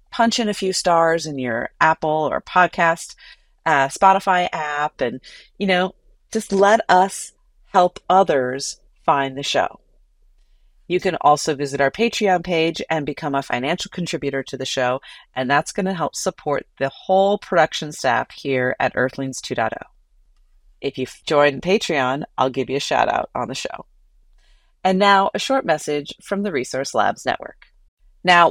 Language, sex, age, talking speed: English, female, 40-59, 160 wpm